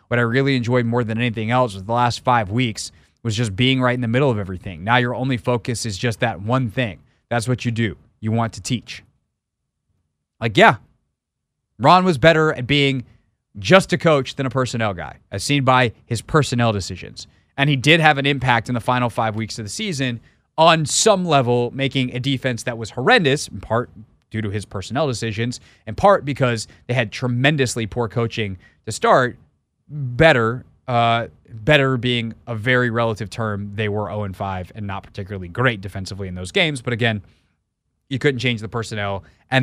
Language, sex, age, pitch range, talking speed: English, male, 20-39, 110-130 Hz, 190 wpm